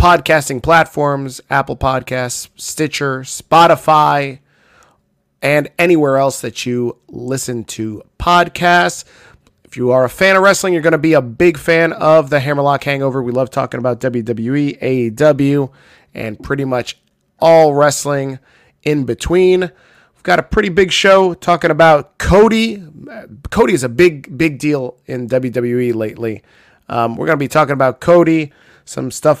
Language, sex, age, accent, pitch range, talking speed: English, male, 20-39, American, 130-170 Hz, 150 wpm